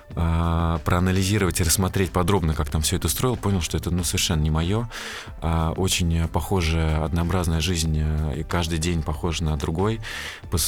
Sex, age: male, 20-39